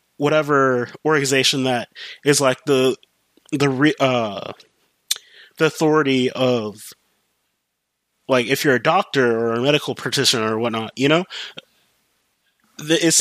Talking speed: 115 wpm